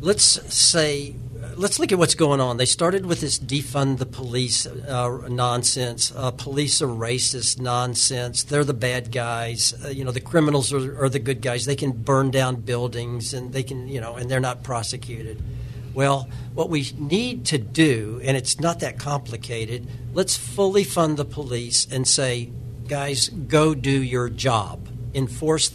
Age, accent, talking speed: 60-79, American, 170 wpm